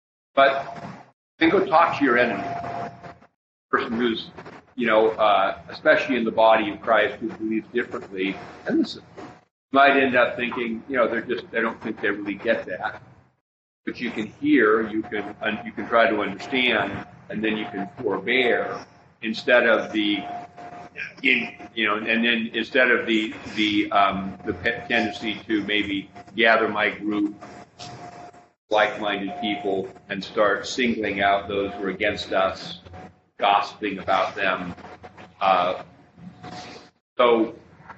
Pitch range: 105-125 Hz